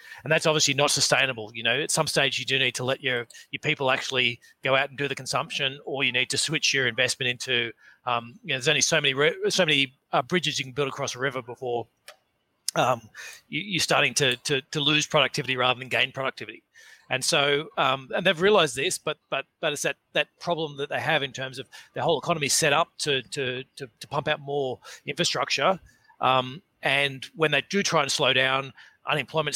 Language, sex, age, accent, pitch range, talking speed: English, male, 30-49, Australian, 130-155 Hz, 220 wpm